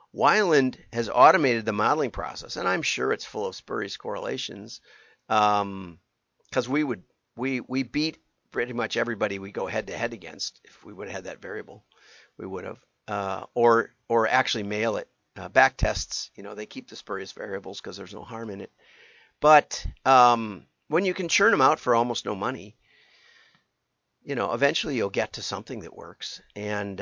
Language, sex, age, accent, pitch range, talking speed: English, male, 50-69, American, 105-130 Hz, 185 wpm